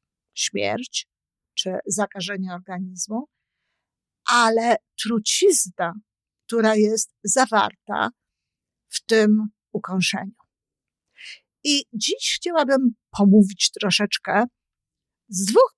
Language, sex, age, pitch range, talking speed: Polish, female, 50-69, 195-235 Hz, 70 wpm